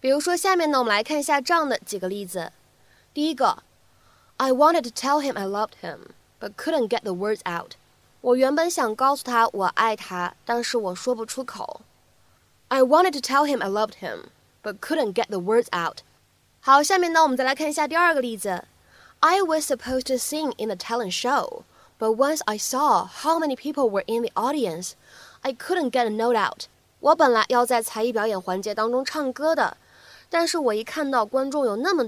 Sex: female